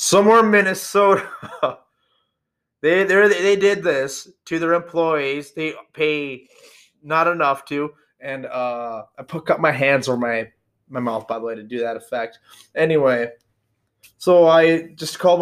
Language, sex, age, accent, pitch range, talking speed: English, male, 20-39, American, 125-165 Hz, 150 wpm